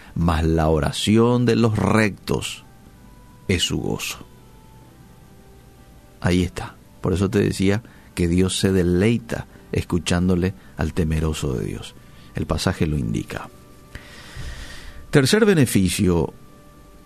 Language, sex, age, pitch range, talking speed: Spanish, male, 50-69, 85-120 Hz, 105 wpm